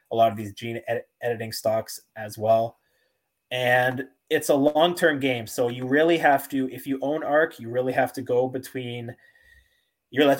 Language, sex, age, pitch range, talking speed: English, male, 20-39, 110-135 Hz, 185 wpm